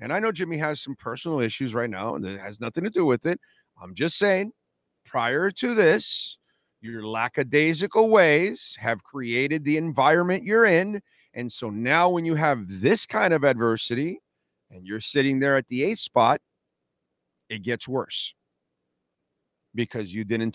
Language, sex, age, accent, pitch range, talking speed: English, male, 40-59, American, 120-160 Hz, 165 wpm